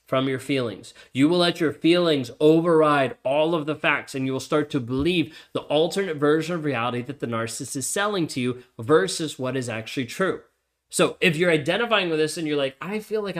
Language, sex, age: English, male, 30-49